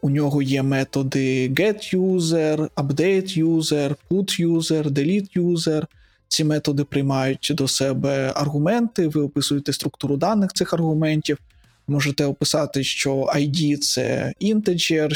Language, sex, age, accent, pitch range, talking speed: Ukrainian, male, 20-39, native, 140-165 Hz, 105 wpm